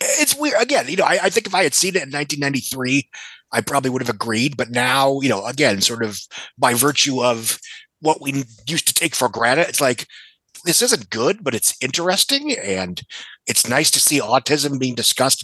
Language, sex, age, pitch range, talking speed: English, male, 30-49, 120-145 Hz, 205 wpm